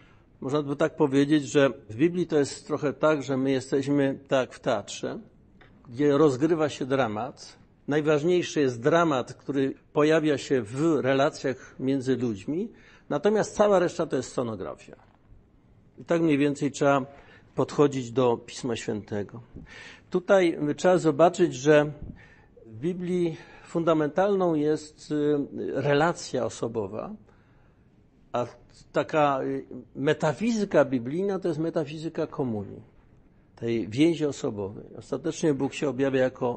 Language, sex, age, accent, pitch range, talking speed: Polish, male, 50-69, native, 125-160 Hz, 120 wpm